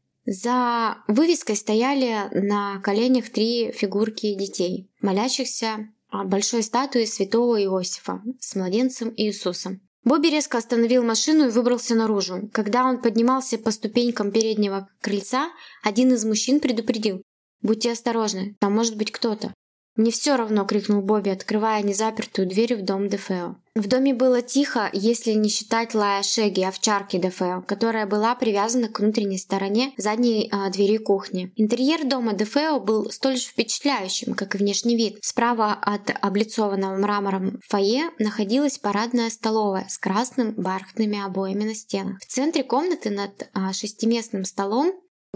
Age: 20-39